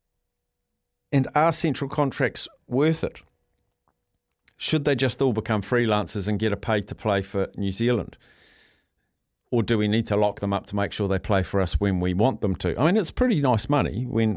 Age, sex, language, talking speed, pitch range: 50-69, male, English, 190 wpm, 100-130 Hz